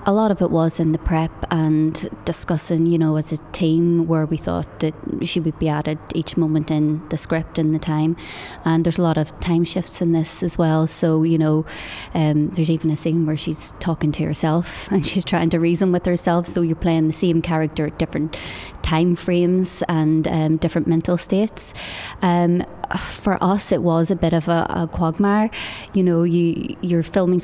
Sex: female